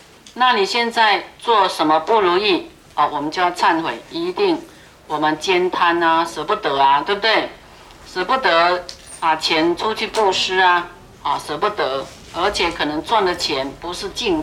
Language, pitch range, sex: Chinese, 175-225 Hz, female